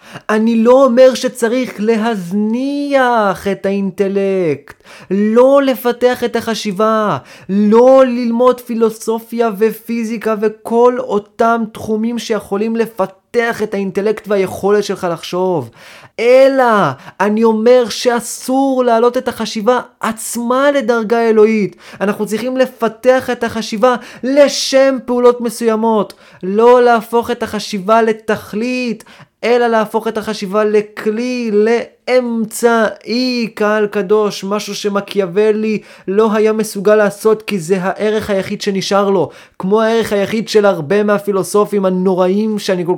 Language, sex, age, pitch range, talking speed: Hebrew, male, 30-49, 205-235 Hz, 110 wpm